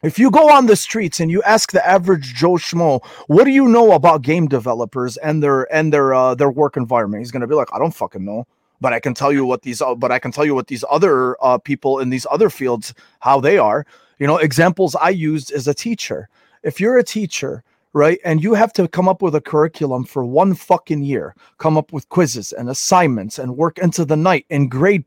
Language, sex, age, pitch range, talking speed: English, male, 30-49, 145-195 Hz, 240 wpm